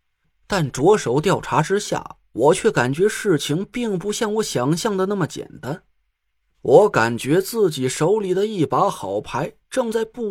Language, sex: Chinese, male